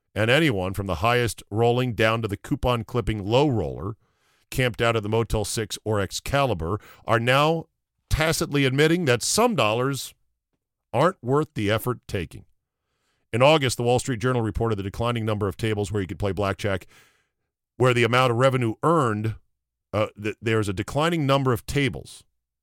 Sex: male